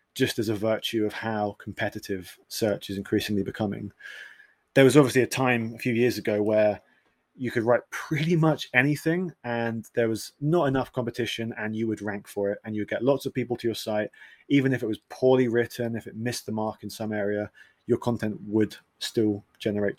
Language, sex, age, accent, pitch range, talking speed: English, male, 30-49, British, 105-125 Hz, 200 wpm